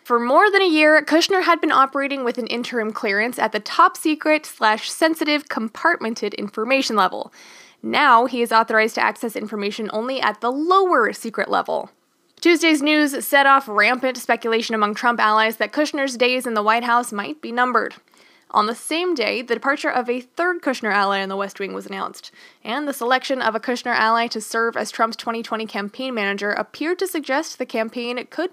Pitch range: 215-285 Hz